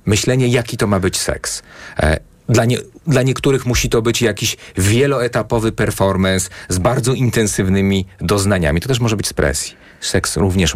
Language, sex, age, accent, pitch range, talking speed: Polish, male, 40-59, native, 95-125 Hz, 150 wpm